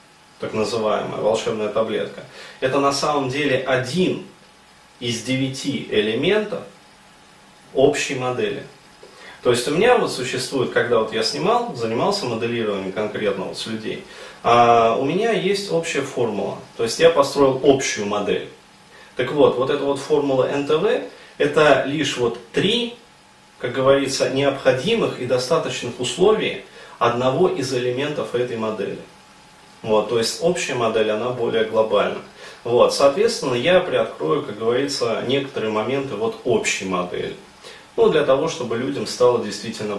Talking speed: 135 wpm